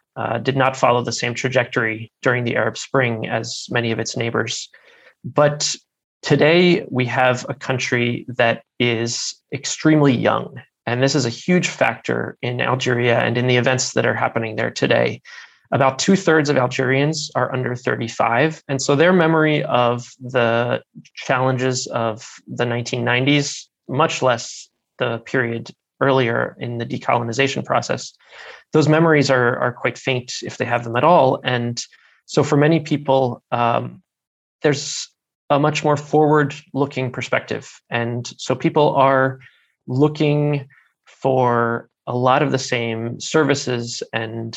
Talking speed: 145 wpm